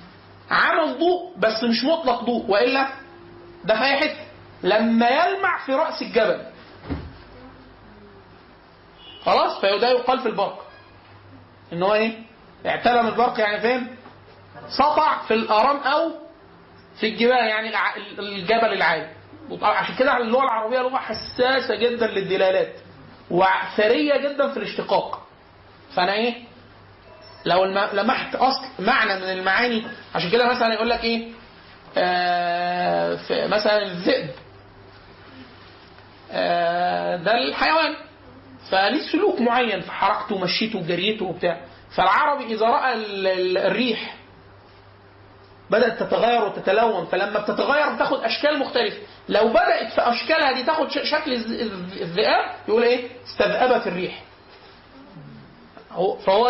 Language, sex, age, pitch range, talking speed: Arabic, male, 40-59, 185-260 Hz, 105 wpm